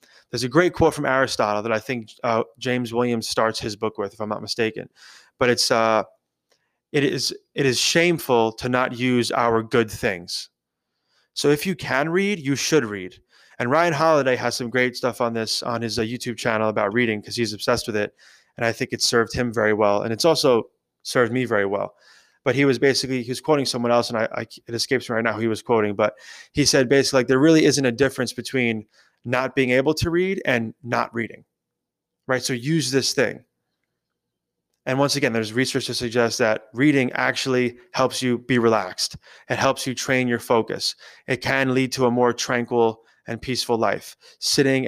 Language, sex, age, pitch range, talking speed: English, male, 20-39, 115-130 Hz, 205 wpm